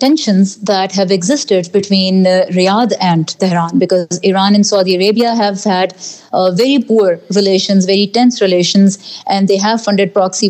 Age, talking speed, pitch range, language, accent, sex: 30-49, 160 wpm, 185-215 Hz, English, Indian, female